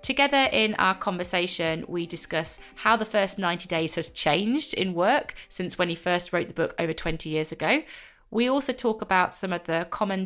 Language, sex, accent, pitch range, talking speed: English, female, British, 170-230 Hz, 200 wpm